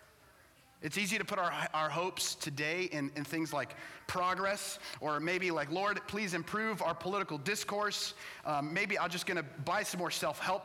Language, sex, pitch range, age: English, male, 175-225 Hz, 30-49